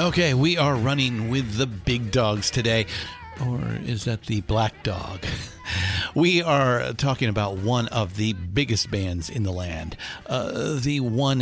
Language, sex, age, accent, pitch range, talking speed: English, male, 50-69, American, 95-130 Hz, 160 wpm